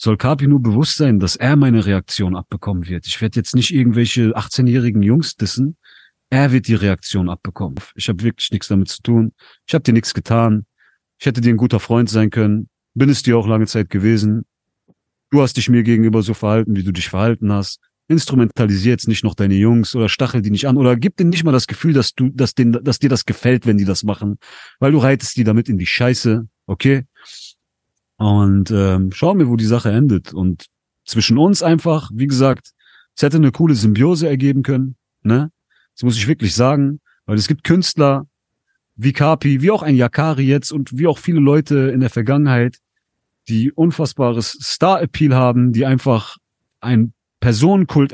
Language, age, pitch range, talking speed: German, 40-59, 110-145 Hz, 195 wpm